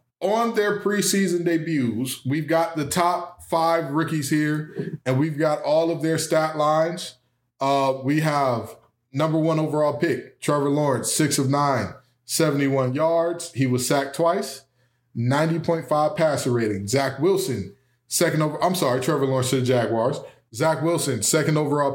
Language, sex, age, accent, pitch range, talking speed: English, male, 20-39, American, 130-165 Hz, 150 wpm